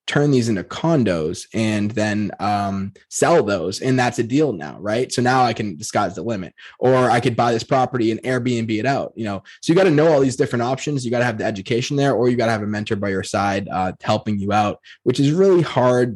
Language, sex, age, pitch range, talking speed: English, male, 20-39, 110-130 Hz, 255 wpm